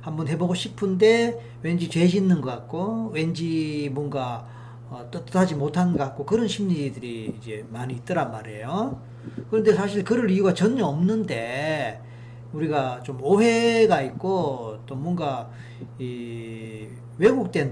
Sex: male